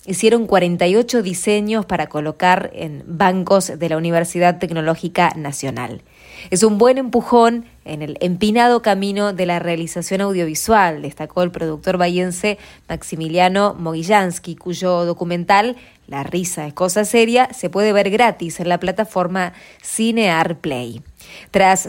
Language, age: English, 20-39